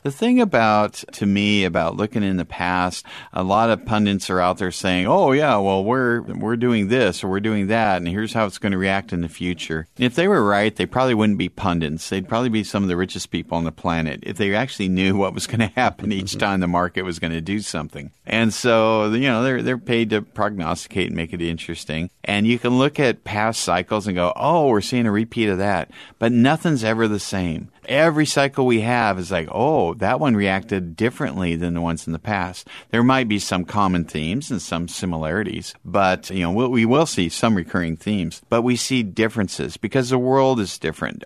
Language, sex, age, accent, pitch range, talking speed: English, male, 50-69, American, 90-115 Hz, 230 wpm